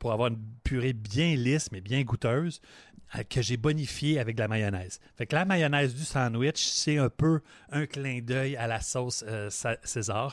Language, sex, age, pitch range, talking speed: French, male, 30-49, 105-135 Hz, 205 wpm